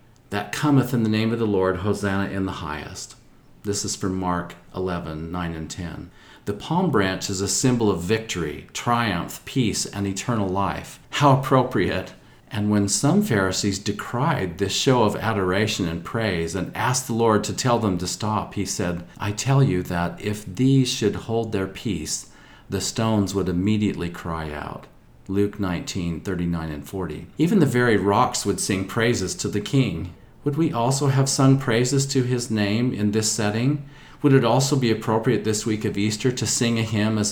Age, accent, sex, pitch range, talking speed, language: 40-59, American, male, 95-120 Hz, 185 wpm, English